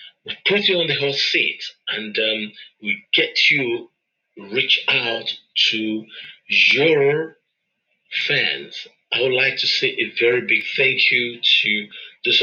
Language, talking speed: English, 140 wpm